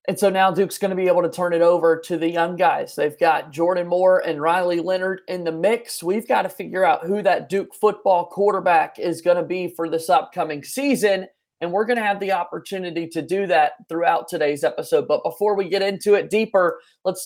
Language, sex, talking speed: English, male, 225 wpm